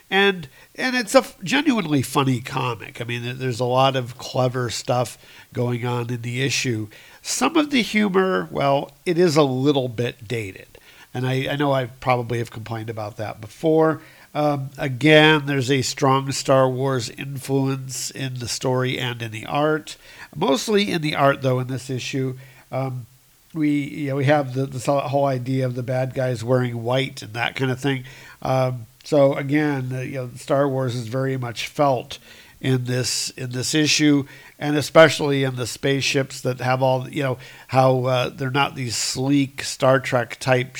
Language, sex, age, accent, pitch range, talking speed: English, male, 50-69, American, 125-140 Hz, 180 wpm